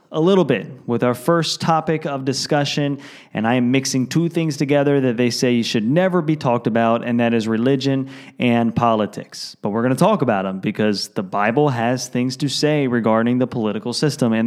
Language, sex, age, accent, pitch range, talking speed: English, male, 20-39, American, 120-145 Hz, 205 wpm